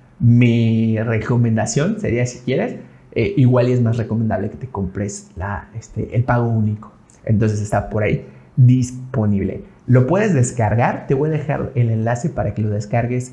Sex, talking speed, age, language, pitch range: male, 165 wpm, 30-49, Spanish, 110-130 Hz